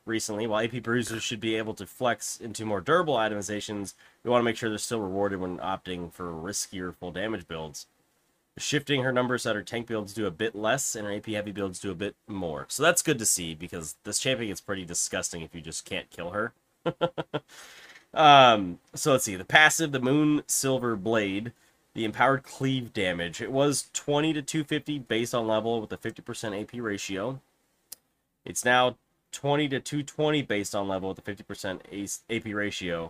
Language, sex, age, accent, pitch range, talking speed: English, male, 30-49, American, 100-125 Hz, 190 wpm